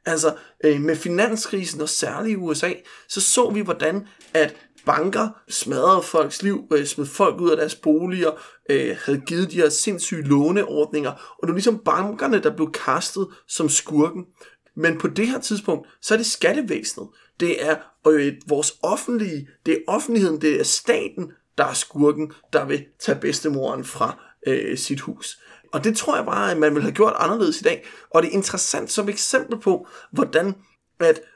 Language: Danish